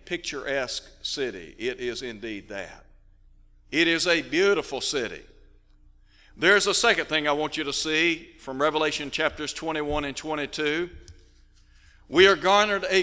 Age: 60-79